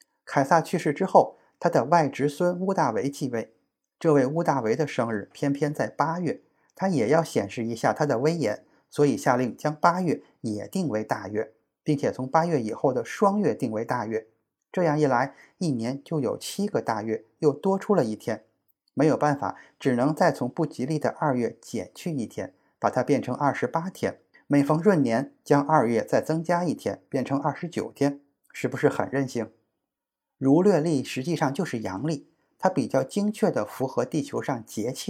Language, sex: Chinese, male